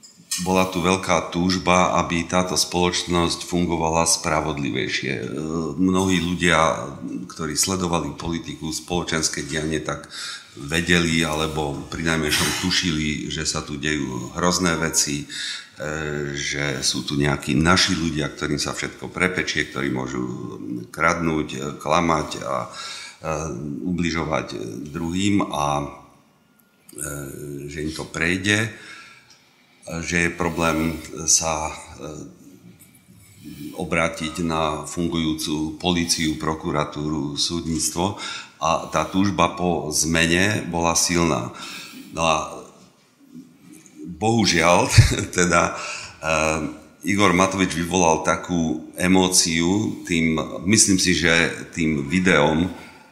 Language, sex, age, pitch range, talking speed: Slovak, male, 50-69, 75-90 Hz, 90 wpm